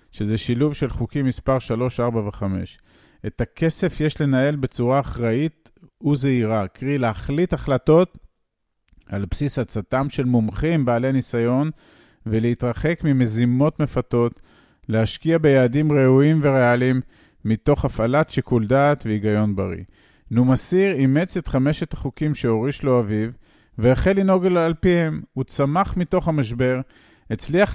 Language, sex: Hebrew, male